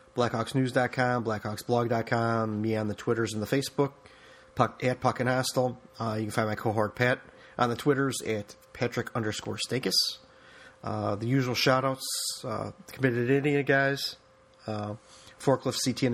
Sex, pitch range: male, 110-130 Hz